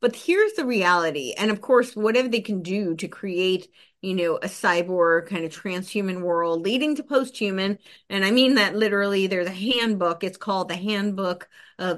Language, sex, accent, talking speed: English, female, American, 185 wpm